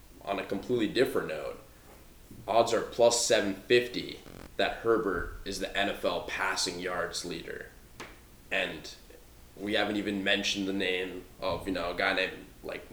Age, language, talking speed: 20-39, English, 145 wpm